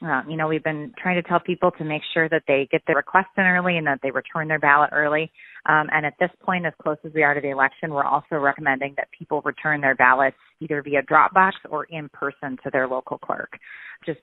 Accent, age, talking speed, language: American, 30-49, 245 wpm, English